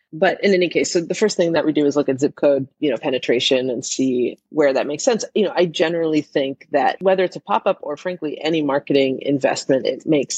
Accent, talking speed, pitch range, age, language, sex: American, 250 wpm, 135-175 Hz, 30-49, English, female